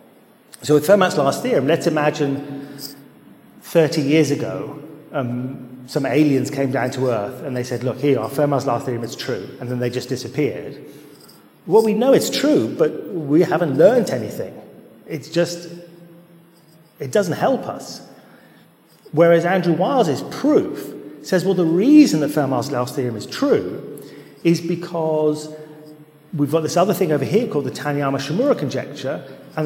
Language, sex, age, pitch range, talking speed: Bulgarian, male, 40-59, 140-170 Hz, 155 wpm